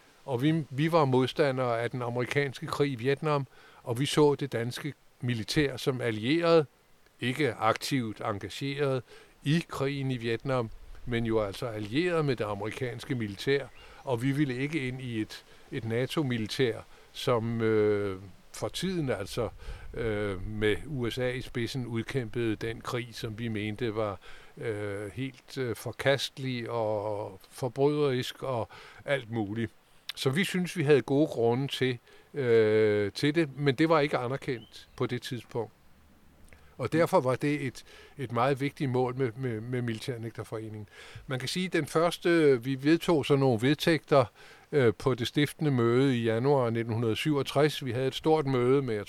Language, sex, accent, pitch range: Danish, male, native, 115-140 Hz